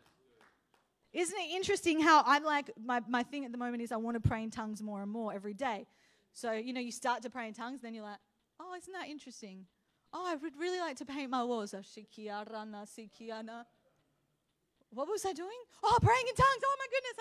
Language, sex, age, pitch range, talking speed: English, female, 30-49, 245-385 Hz, 210 wpm